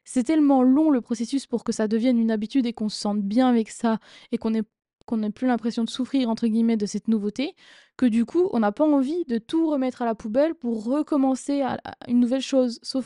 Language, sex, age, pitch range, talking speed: French, female, 20-39, 220-260 Hz, 245 wpm